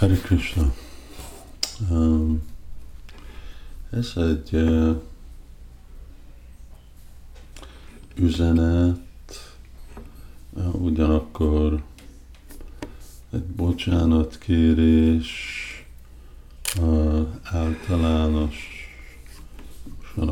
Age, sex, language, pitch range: 50-69, male, Hungarian, 65-80 Hz